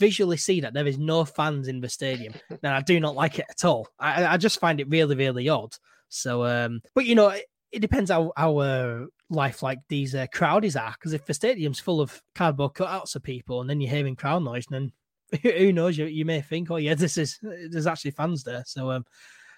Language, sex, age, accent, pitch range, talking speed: English, male, 20-39, British, 130-165 Hz, 235 wpm